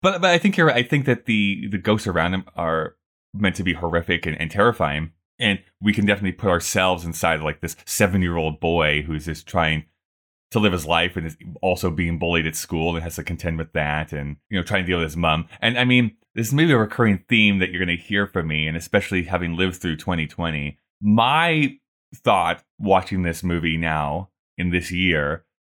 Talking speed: 220 wpm